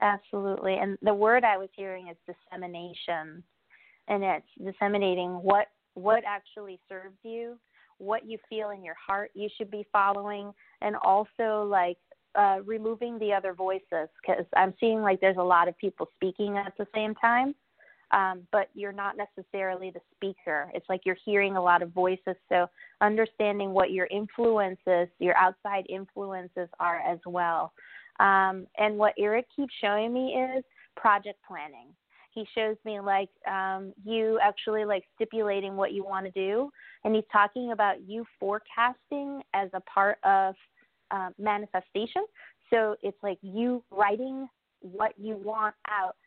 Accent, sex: American, female